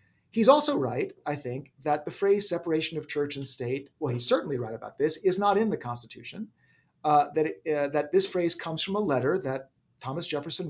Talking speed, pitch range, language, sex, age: 215 wpm, 130-175 Hz, English, male, 40-59